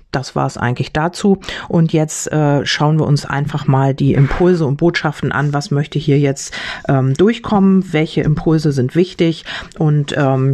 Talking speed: 170 wpm